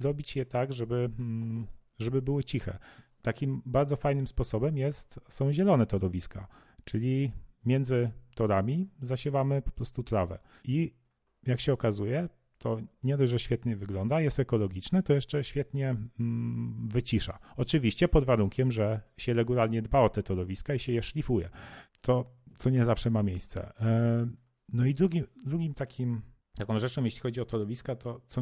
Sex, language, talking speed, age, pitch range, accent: male, Polish, 150 wpm, 40-59, 115-145 Hz, native